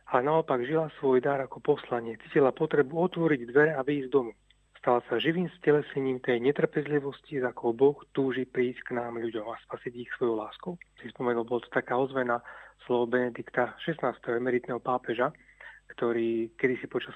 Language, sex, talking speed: Slovak, male, 160 wpm